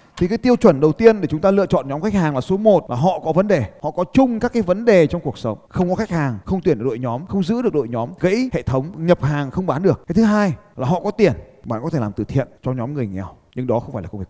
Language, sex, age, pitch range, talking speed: Vietnamese, male, 20-39, 135-210 Hz, 330 wpm